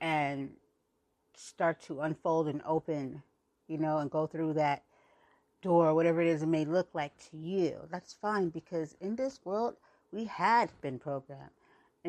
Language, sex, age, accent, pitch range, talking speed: English, female, 40-59, American, 155-195 Hz, 165 wpm